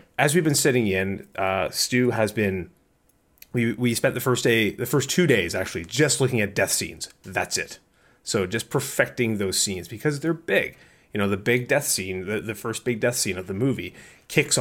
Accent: American